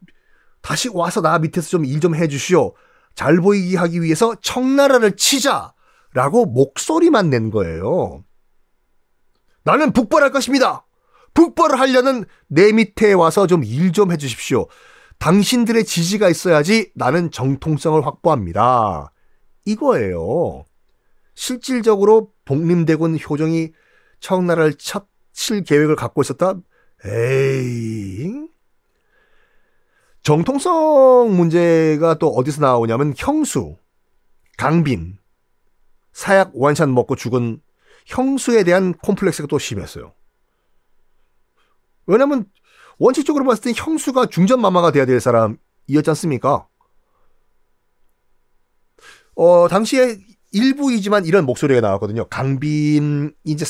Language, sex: Korean, male